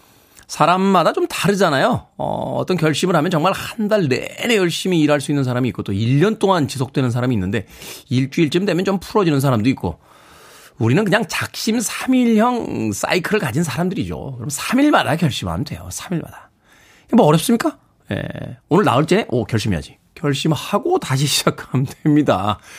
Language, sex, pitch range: Korean, male, 130-190 Hz